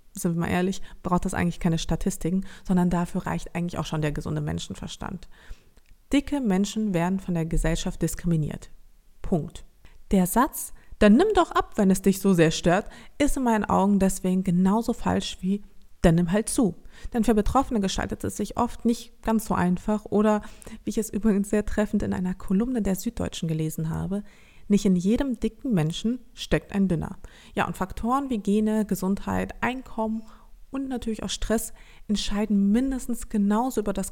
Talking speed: 175 wpm